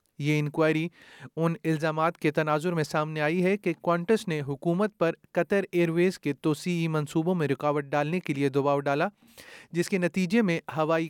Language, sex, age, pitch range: Urdu, male, 30-49, 155-180 Hz